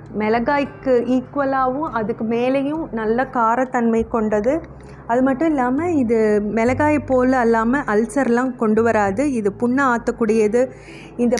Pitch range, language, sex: 215-255 Hz, Tamil, female